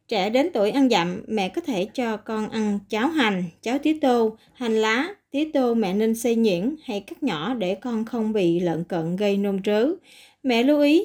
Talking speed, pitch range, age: 210 wpm, 210-270 Hz, 20-39